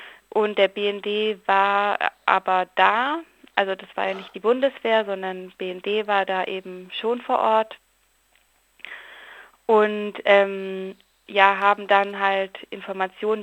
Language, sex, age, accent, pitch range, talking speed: German, female, 20-39, German, 185-210 Hz, 125 wpm